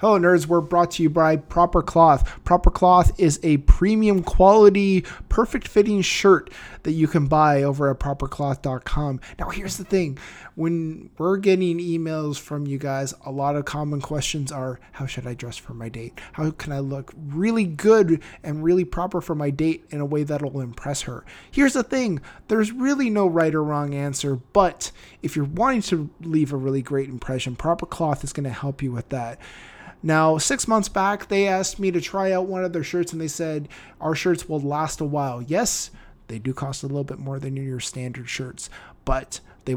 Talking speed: 200 wpm